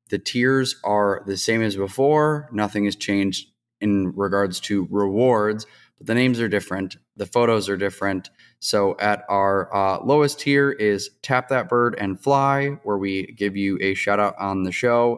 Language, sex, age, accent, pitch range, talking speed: English, male, 20-39, American, 100-115 Hz, 180 wpm